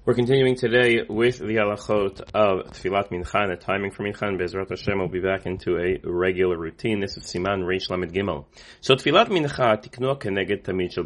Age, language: 30-49, English